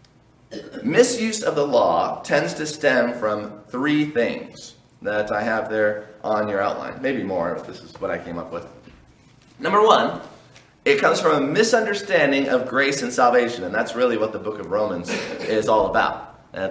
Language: English